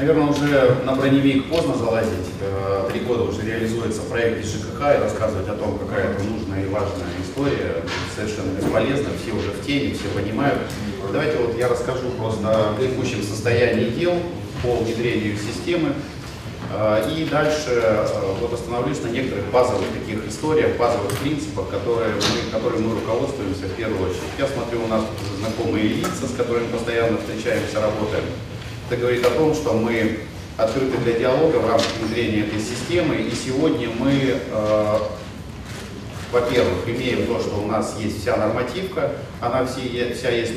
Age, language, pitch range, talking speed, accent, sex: 30-49, Russian, 105-125 Hz, 150 wpm, native, male